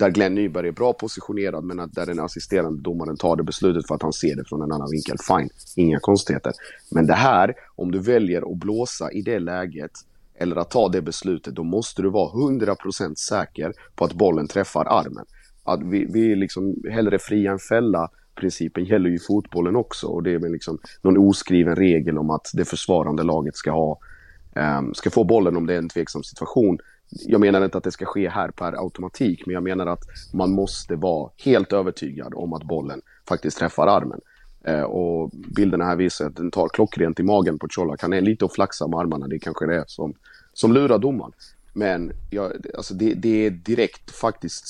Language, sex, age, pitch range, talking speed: Swedish, male, 30-49, 85-100 Hz, 200 wpm